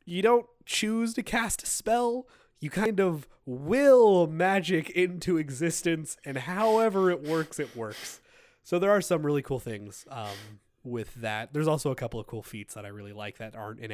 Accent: American